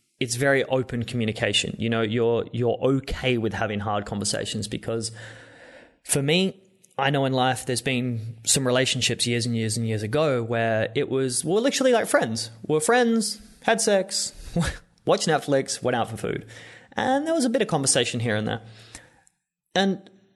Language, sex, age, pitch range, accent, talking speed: English, male, 20-39, 115-155 Hz, Australian, 170 wpm